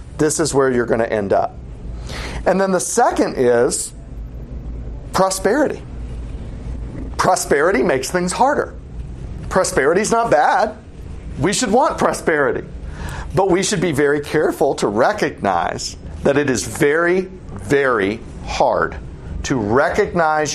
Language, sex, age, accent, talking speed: English, male, 40-59, American, 125 wpm